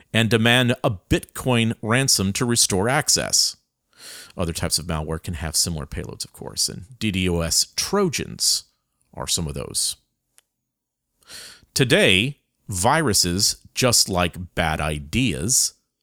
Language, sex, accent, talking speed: English, male, American, 115 wpm